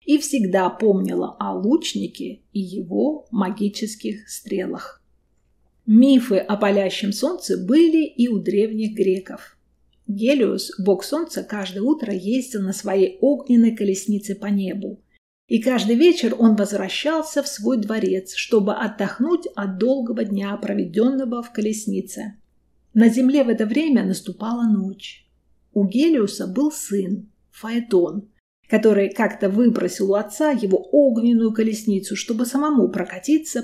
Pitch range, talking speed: 200-255 Hz, 125 wpm